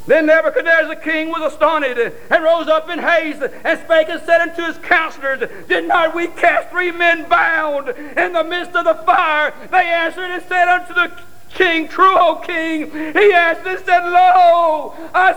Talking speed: 185 wpm